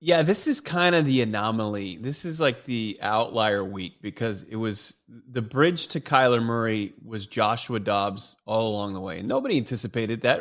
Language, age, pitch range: English, 30-49, 115-145 Hz